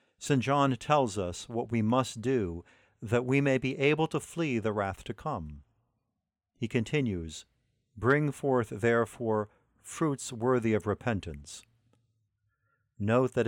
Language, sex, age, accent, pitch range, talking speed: English, male, 50-69, American, 105-135 Hz, 135 wpm